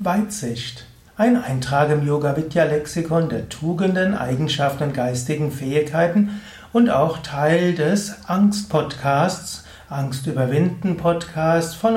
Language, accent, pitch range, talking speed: German, German, 135-180 Hz, 90 wpm